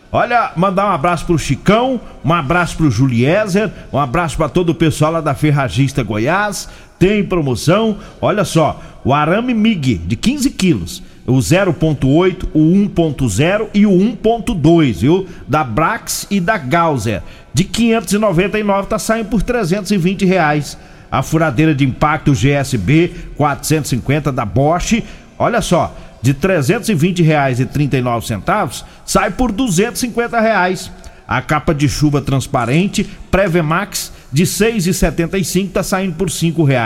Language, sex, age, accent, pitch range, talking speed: Portuguese, male, 50-69, Brazilian, 145-190 Hz, 135 wpm